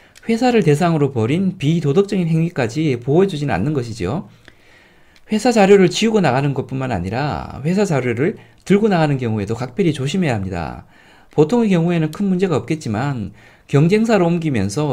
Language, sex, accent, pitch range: Korean, male, native, 125-190 Hz